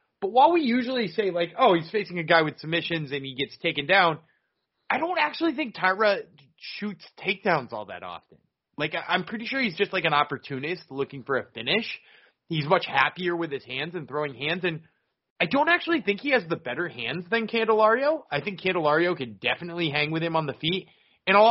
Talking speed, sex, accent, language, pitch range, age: 210 wpm, male, American, English, 135-205 Hz, 20-39